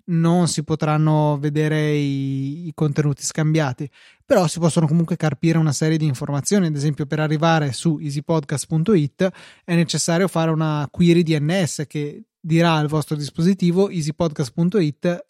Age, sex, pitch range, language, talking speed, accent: 20-39, male, 150-175 Hz, Italian, 135 wpm, native